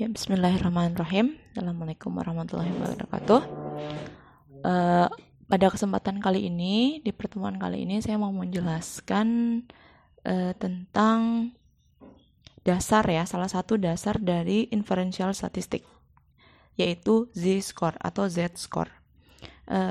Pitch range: 180-220 Hz